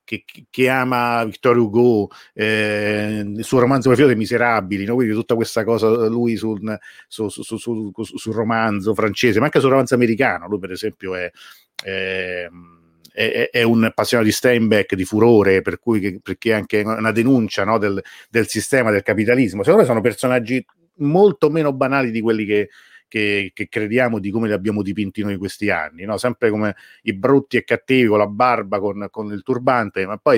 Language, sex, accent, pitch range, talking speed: Italian, male, native, 105-125 Hz, 185 wpm